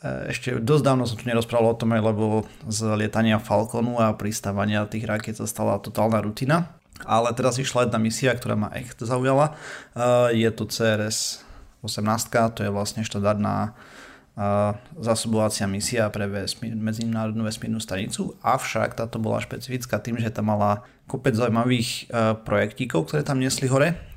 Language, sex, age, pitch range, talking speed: Slovak, male, 30-49, 105-120 Hz, 140 wpm